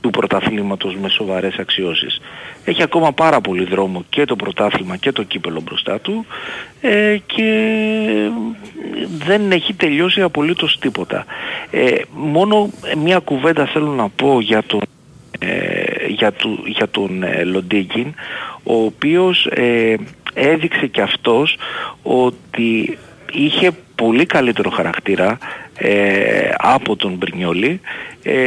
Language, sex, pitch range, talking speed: Greek, male, 100-165 Hz, 115 wpm